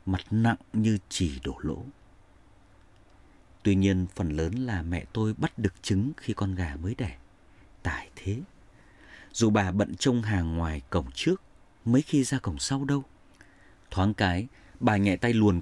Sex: male